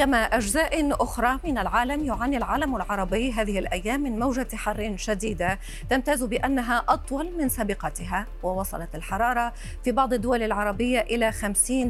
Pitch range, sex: 205-265 Hz, female